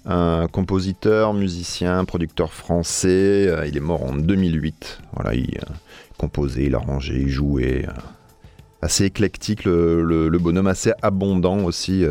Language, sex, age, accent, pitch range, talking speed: French, male, 30-49, French, 75-95 Hz, 130 wpm